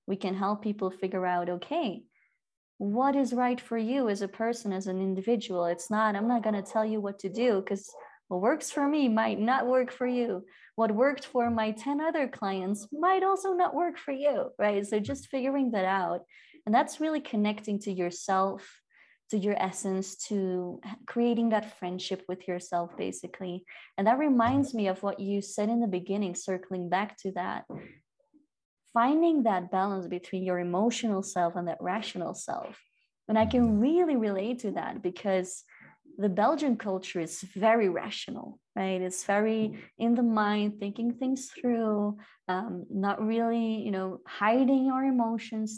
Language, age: English, 20-39